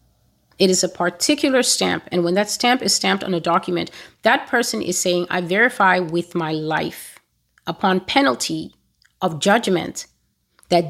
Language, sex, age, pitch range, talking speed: English, female, 30-49, 170-210 Hz, 155 wpm